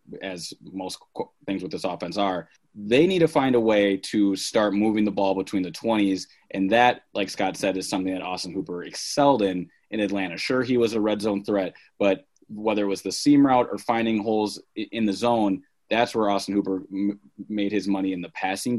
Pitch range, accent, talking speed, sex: 95-115 Hz, American, 210 wpm, male